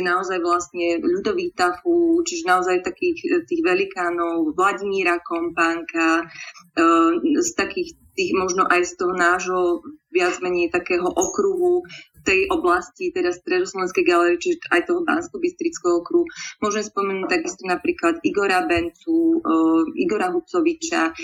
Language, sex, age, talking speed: Slovak, female, 20-39, 120 wpm